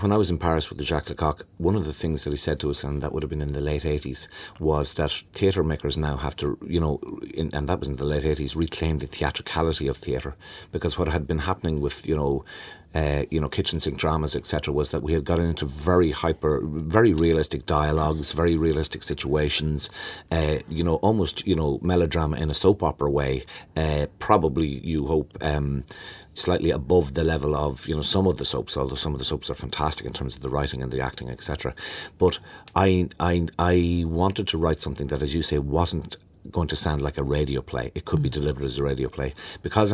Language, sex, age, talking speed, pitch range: English, male, 30-49, 225 wpm, 75-85 Hz